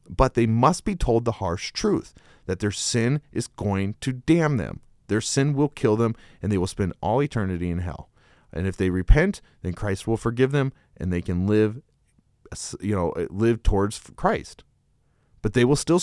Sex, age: male, 30-49